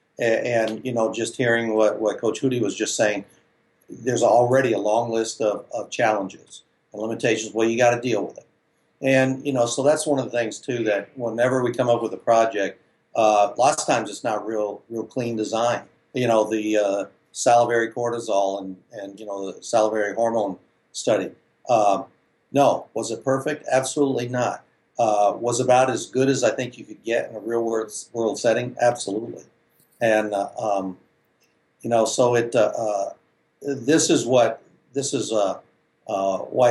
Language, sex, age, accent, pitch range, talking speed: English, male, 60-79, American, 110-130 Hz, 185 wpm